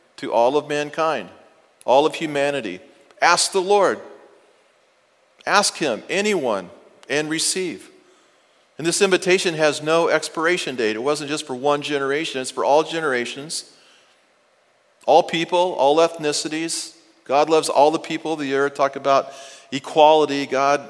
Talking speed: 140 wpm